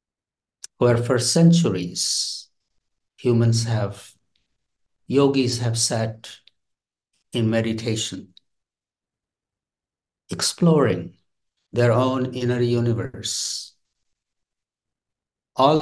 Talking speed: 60 wpm